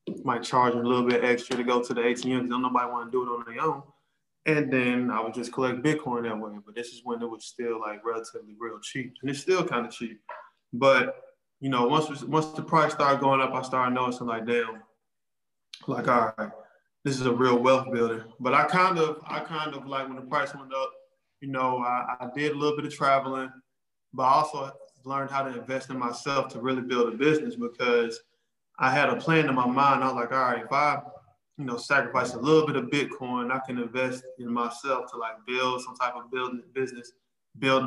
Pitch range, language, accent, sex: 120-140 Hz, English, American, male